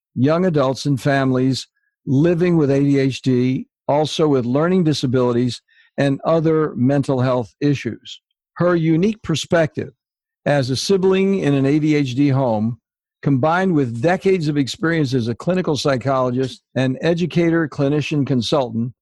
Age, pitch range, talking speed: 60-79, 130-160 Hz, 125 wpm